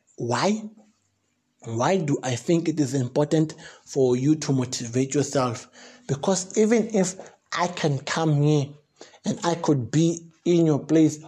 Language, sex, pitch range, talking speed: English, male, 150-180 Hz, 145 wpm